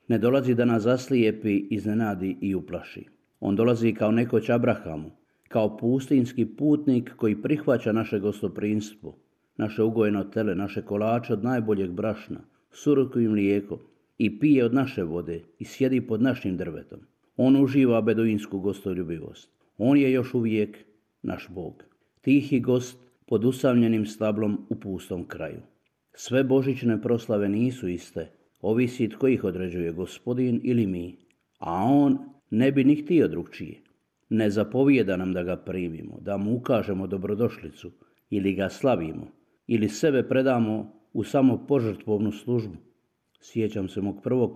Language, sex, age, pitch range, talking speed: Croatian, male, 50-69, 100-125 Hz, 140 wpm